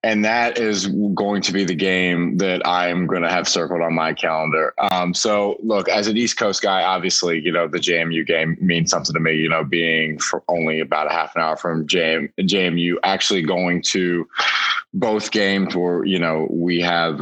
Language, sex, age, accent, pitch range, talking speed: English, male, 20-39, American, 85-100 Hz, 195 wpm